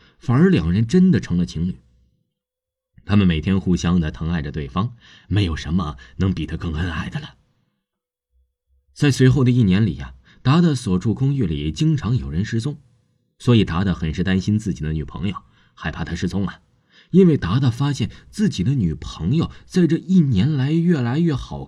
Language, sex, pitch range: Chinese, male, 90-150 Hz